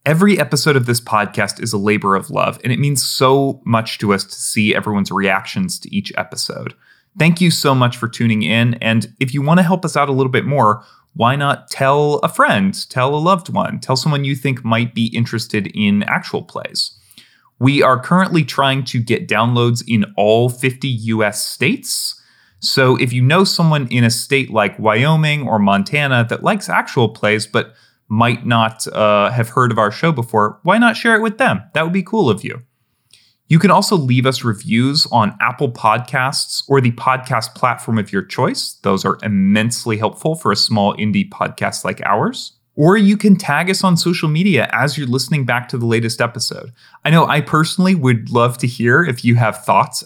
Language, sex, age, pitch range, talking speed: English, male, 30-49, 115-155 Hz, 200 wpm